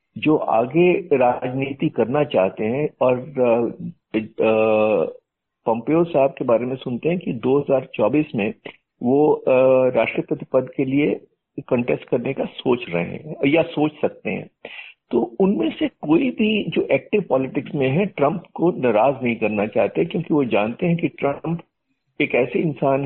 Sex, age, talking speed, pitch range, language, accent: male, 50-69, 150 wpm, 130-180 Hz, Hindi, native